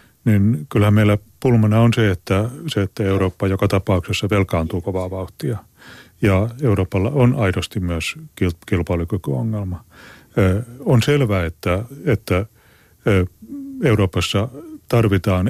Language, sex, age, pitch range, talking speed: Finnish, male, 30-49, 90-115 Hz, 100 wpm